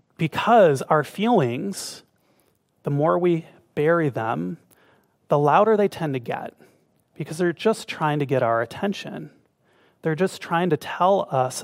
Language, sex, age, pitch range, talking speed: English, male, 30-49, 140-175 Hz, 145 wpm